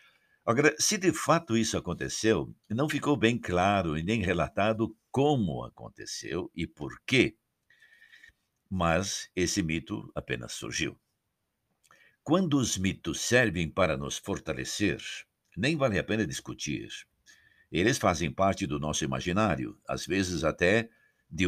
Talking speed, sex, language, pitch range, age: 125 wpm, male, Portuguese, 85-120 Hz, 60-79